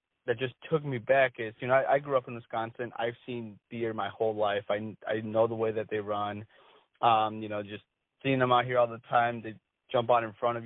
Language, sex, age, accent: English, male, 30-49, American